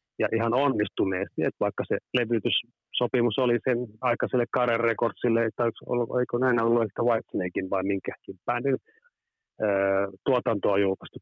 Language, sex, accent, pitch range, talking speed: Finnish, male, native, 105-125 Hz, 130 wpm